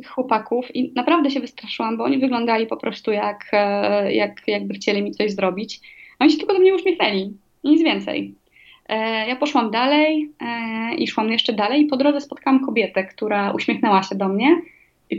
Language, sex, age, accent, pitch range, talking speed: Polish, female, 20-39, native, 205-265 Hz, 180 wpm